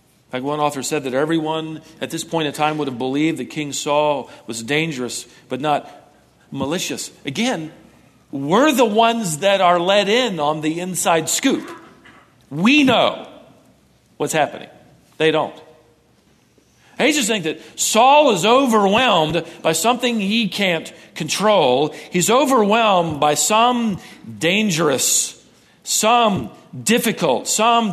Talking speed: 130 wpm